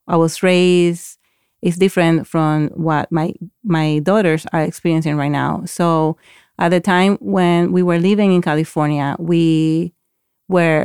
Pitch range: 155-185 Hz